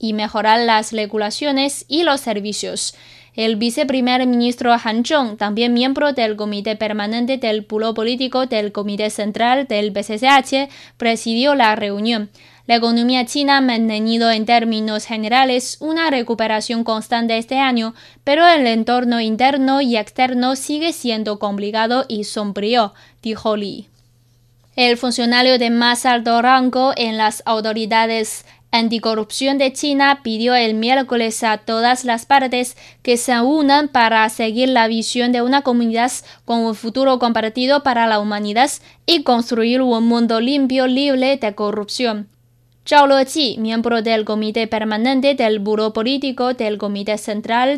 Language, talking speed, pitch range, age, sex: Spanish, 140 wpm, 215-255 Hz, 10-29, female